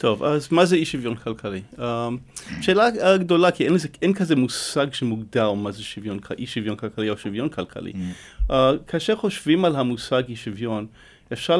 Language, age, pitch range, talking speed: Hebrew, 30-49, 115-160 Hz, 155 wpm